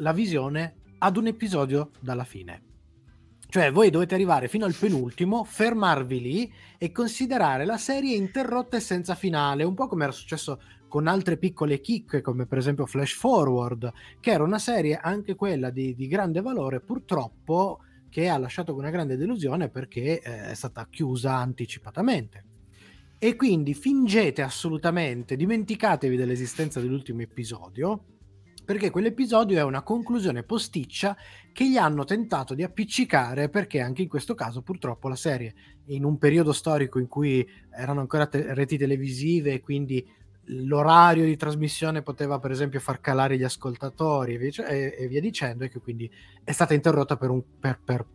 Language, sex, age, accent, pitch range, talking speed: Italian, male, 20-39, native, 125-185 Hz, 155 wpm